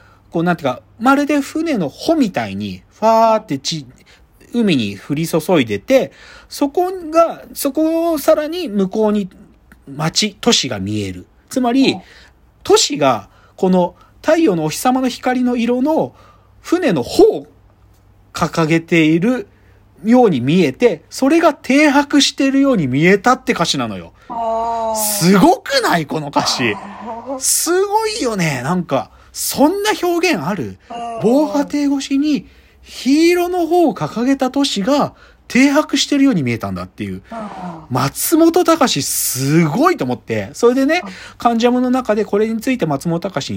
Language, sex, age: Japanese, male, 40-59